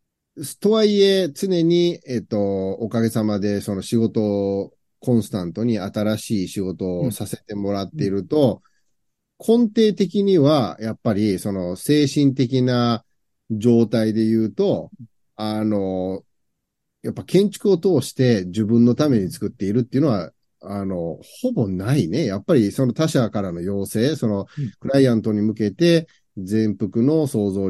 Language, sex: Japanese, male